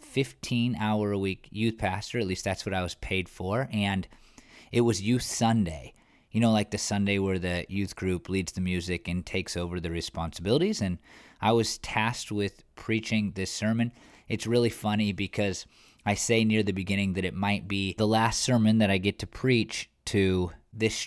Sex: male